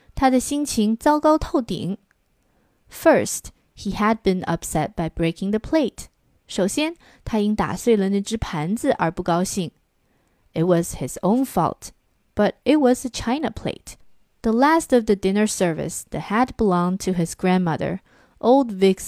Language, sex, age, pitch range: Chinese, female, 20-39, 180-250 Hz